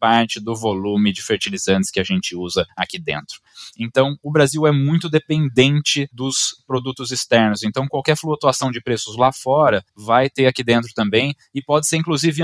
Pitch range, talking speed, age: 120-160 Hz, 175 wpm, 20-39